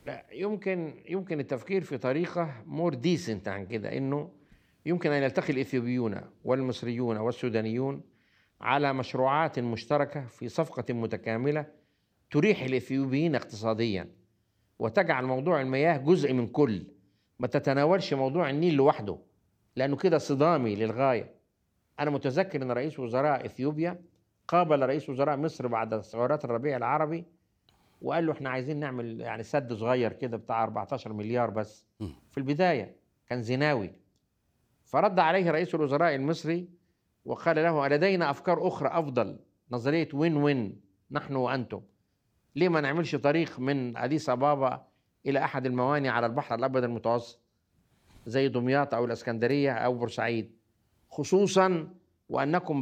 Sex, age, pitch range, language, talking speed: male, 50-69, 120-155 Hz, Arabic, 125 wpm